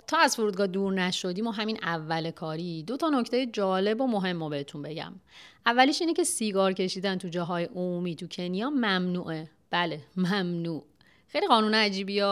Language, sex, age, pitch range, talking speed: Persian, female, 30-49, 170-230 Hz, 165 wpm